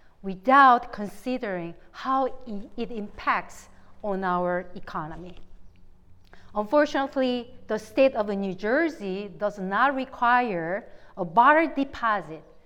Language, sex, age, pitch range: English, female, 40-59, 180-250 Hz